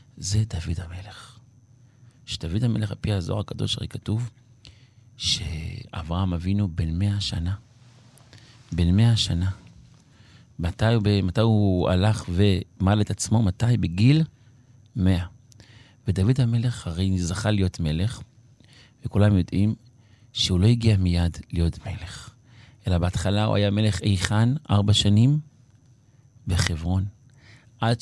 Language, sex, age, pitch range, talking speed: Hebrew, male, 40-59, 95-120 Hz, 115 wpm